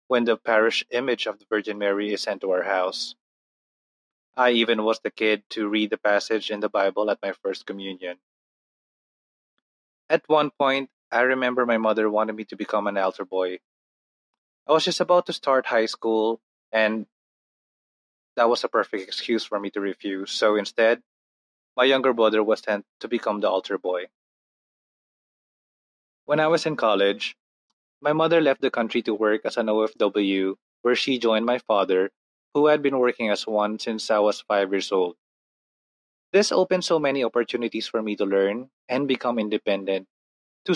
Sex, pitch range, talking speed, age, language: male, 100-125 Hz, 175 wpm, 20-39, Filipino